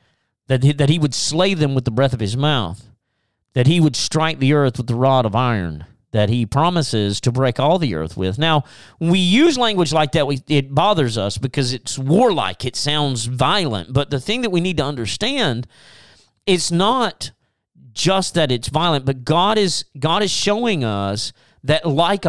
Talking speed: 185 wpm